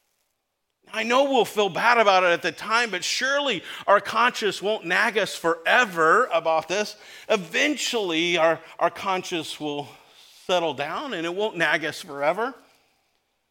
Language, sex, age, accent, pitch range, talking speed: English, male, 40-59, American, 185-230 Hz, 145 wpm